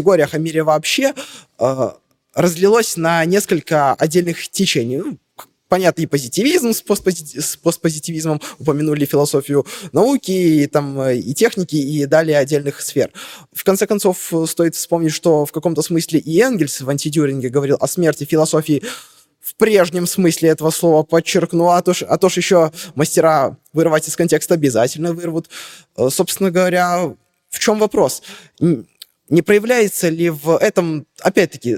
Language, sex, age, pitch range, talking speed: Russian, male, 20-39, 155-185 Hz, 130 wpm